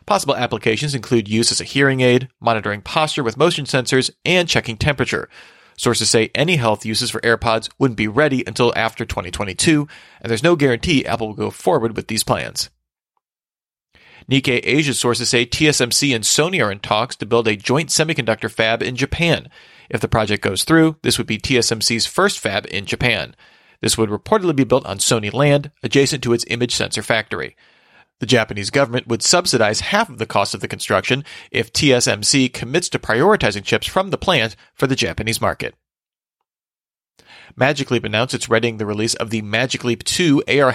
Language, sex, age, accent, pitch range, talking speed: English, male, 40-59, American, 110-140 Hz, 180 wpm